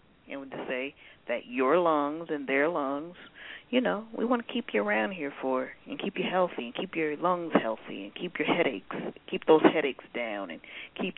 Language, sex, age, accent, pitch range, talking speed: English, female, 40-59, American, 130-205 Hz, 205 wpm